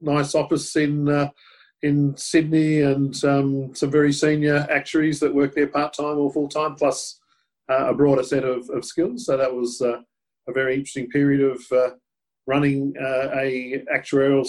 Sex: male